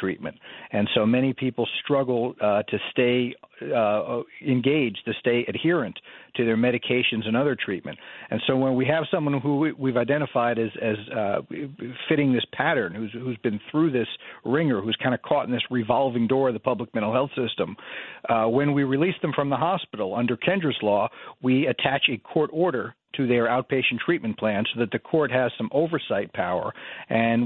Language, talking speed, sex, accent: English, 190 wpm, male, American